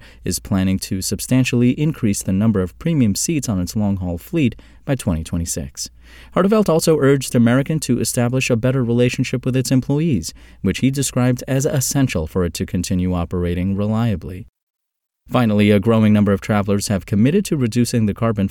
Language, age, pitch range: English, 30-49, 95-125 Hz